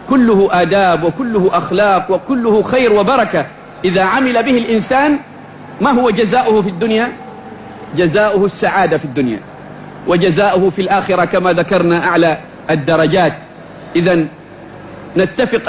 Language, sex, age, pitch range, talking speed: English, male, 50-69, 175-215 Hz, 110 wpm